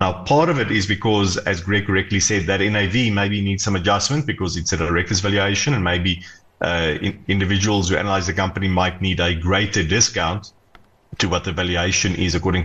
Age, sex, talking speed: 30-49, male, 190 wpm